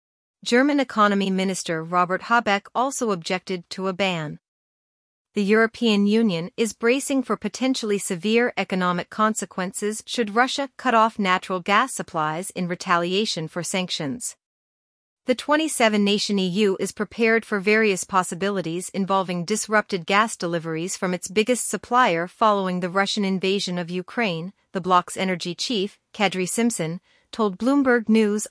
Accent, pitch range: American, 180-225 Hz